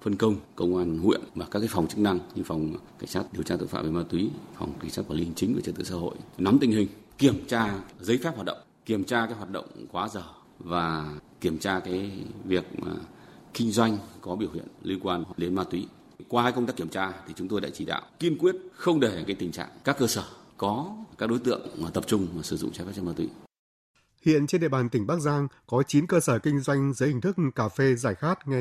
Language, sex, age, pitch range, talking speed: Vietnamese, male, 30-49, 110-140 Hz, 255 wpm